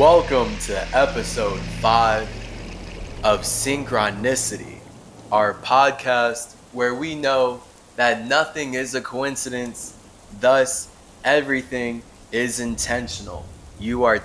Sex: male